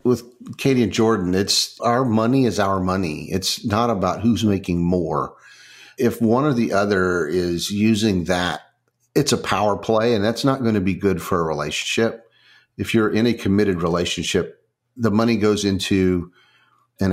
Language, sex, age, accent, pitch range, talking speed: English, male, 50-69, American, 90-115 Hz, 170 wpm